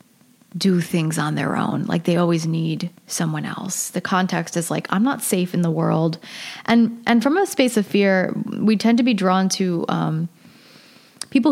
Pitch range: 175-225 Hz